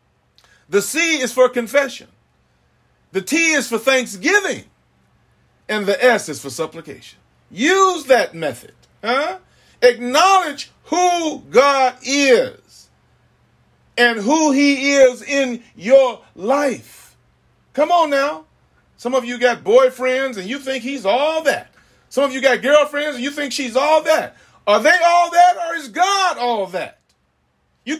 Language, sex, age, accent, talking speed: English, male, 40-59, American, 140 wpm